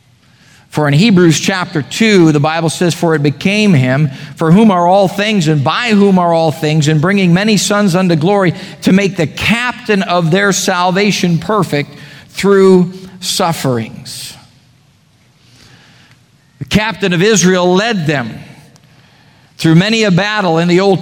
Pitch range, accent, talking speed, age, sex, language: 145-200 Hz, American, 150 wpm, 50-69, male, English